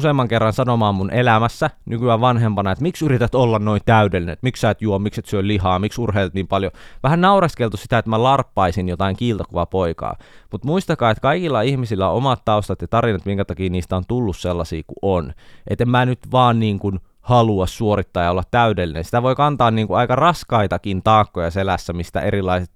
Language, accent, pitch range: Finnish, native, 95-120 Hz